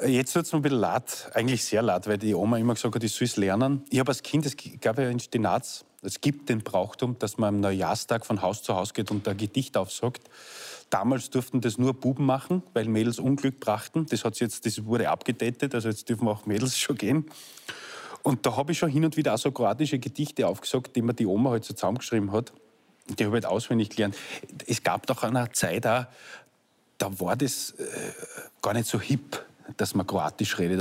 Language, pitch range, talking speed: German, 105-130 Hz, 215 wpm